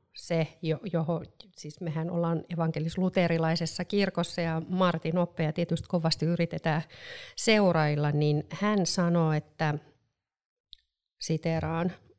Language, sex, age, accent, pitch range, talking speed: Finnish, female, 40-59, native, 165-205 Hz, 105 wpm